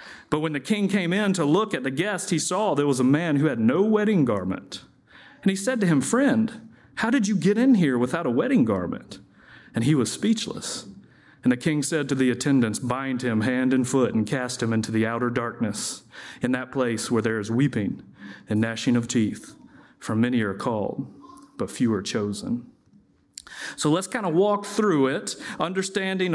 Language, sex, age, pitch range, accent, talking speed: English, male, 40-59, 135-205 Hz, American, 200 wpm